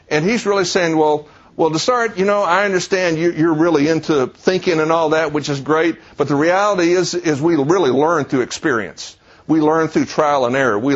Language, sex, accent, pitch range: English, male, American, 140-185 Hz